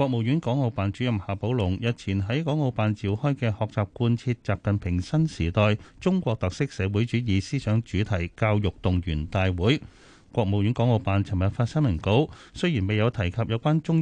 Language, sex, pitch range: Chinese, male, 100-135 Hz